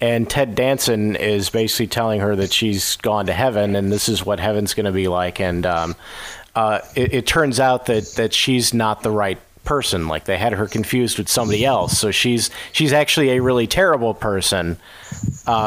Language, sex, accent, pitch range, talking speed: English, male, American, 100-130 Hz, 200 wpm